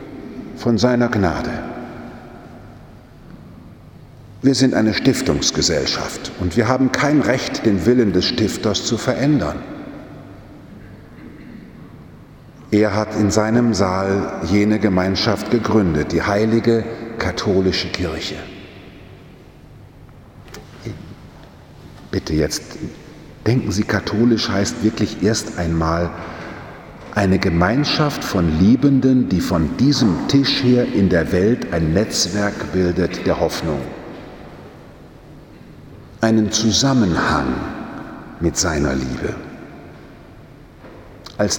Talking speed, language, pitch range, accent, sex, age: 90 wpm, German, 95-120 Hz, German, male, 50-69